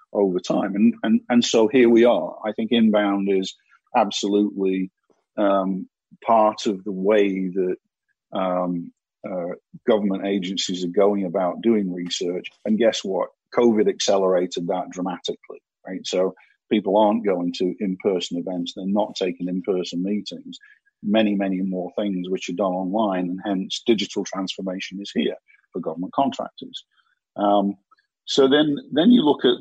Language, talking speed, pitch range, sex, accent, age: English, 150 wpm, 95-115 Hz, male, British, 50-69